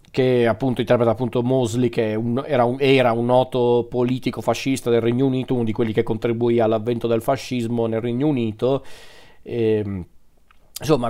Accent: native